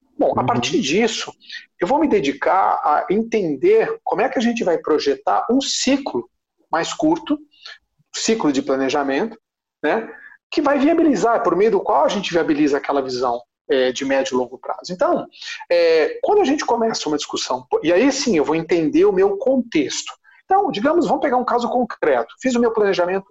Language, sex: Portuguese, male